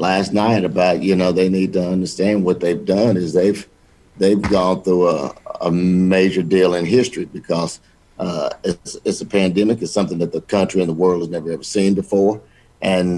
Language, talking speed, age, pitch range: English, 195 wpm, 50-69, 90-95 Hz